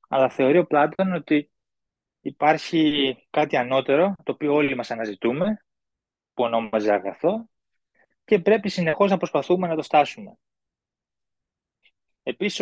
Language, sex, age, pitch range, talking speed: Greek, male, 20-39, 125-165 Hz, 120 wpm